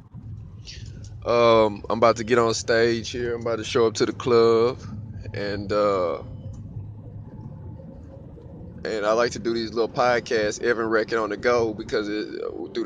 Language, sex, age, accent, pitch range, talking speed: English, male, 20-39, American, 105-120 Hz, 160 wpm